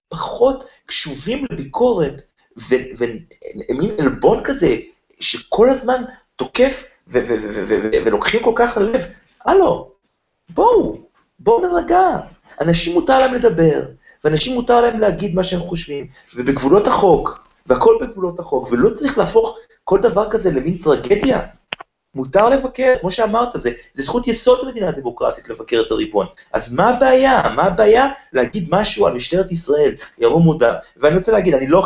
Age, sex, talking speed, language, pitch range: 30-49, male, 155 wpm, Hebrew, 150-250 Hz